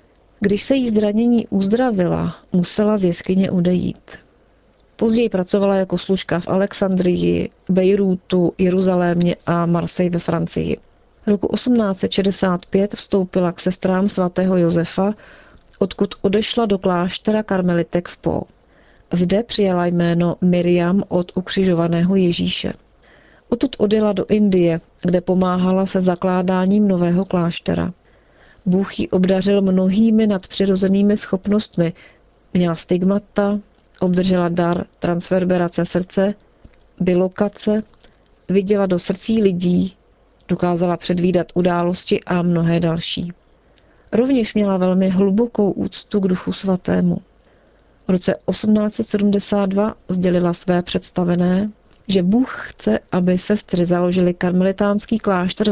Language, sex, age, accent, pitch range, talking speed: Czech, female, 40-59, native, 175-205 Hz, 105 wpm